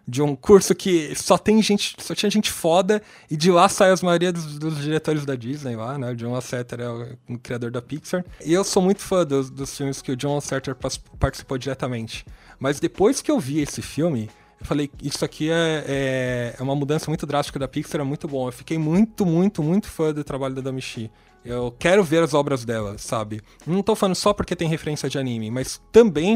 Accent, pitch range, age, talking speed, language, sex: Brazilian, 125-160 Hz, 20-39, 225 wpm, Portuguese, male